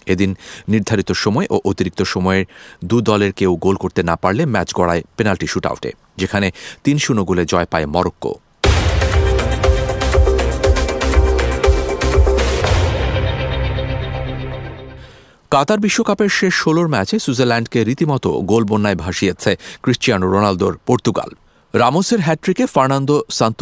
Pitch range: 85-125 Hz